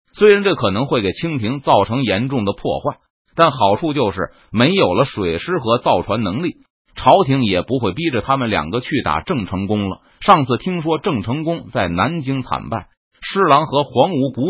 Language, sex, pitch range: Chinese, male, 110-180 Hz